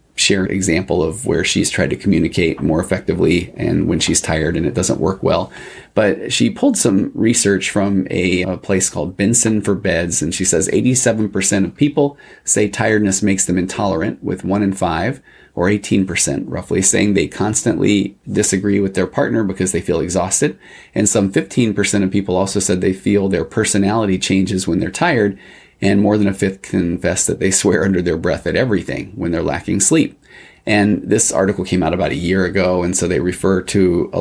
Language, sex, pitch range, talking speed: English, male, 90-105 Hz, 195 wpm